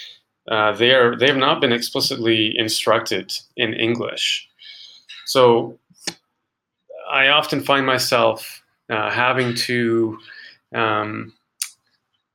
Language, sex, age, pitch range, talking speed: English, male, 30-49, 105-130 Hz, 95 wpm